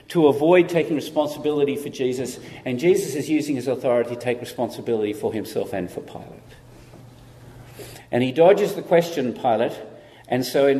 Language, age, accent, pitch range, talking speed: English, 50-69, Australian, 120-150 Hz, 160 wpm